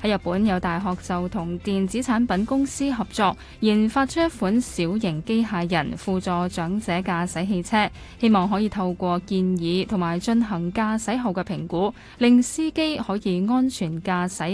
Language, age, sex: Chinese, 10-29, female